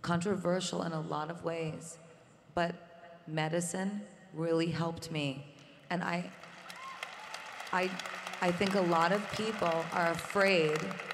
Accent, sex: American, female